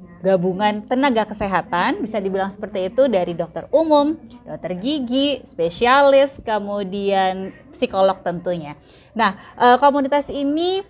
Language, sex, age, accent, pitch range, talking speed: Indonesian, female, 20-39, native, 195-270 Hz, 105 wpm